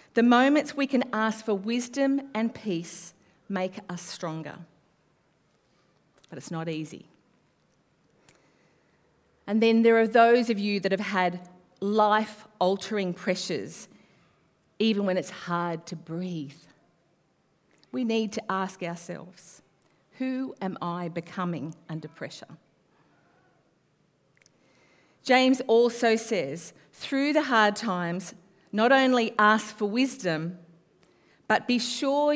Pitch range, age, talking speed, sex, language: 175-230 Hz, 40-59, 110 wpm, female, English